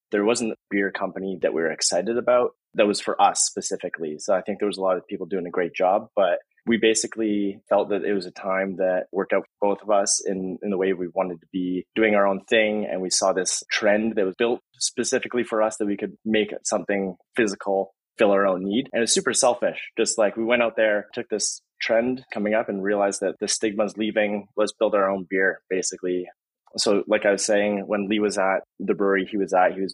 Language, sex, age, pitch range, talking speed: English, male, 20-39, 95-110 Hz, 245 wpm